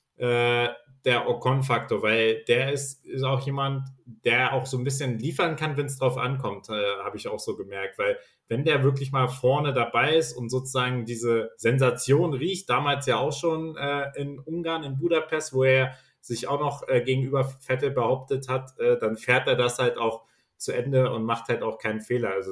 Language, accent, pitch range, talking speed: German, German, 120-140 Hz, 195 wpm